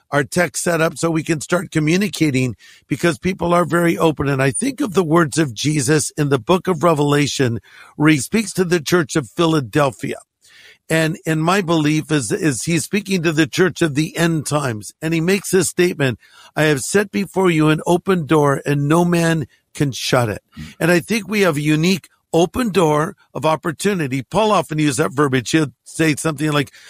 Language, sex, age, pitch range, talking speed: English, male, 50-69, 150-190 Hz, 200 wpm